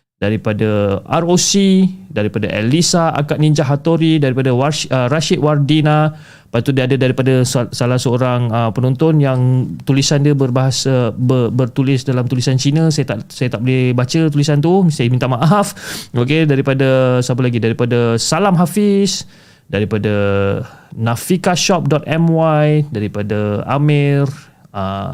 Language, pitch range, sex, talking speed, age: Malay, 120-155 Hz, male, 115 wpm, 20-39